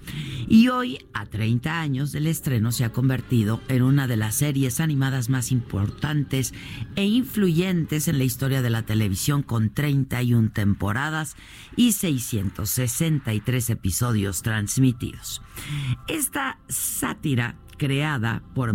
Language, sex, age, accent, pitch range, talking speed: Spanish, female, 50-69, Mexican, 115-155 Hz, 120 wpm